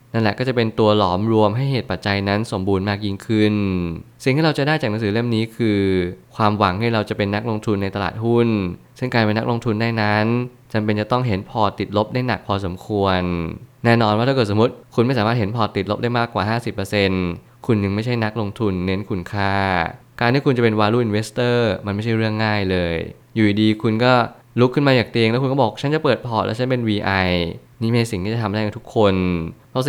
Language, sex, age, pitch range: Thai, male, 20-39, 100-120 Hz